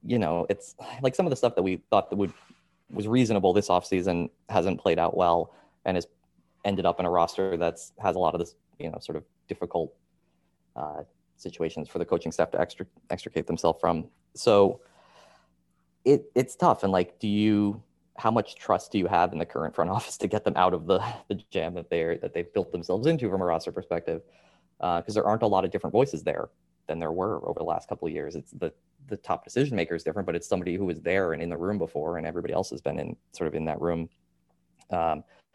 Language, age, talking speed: English, 20-39, 230 wpm